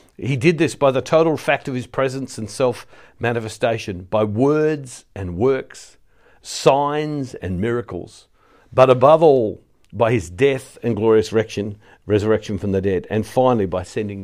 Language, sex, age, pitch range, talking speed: English, male, 50-69, 110-145 Hz, 155 wpm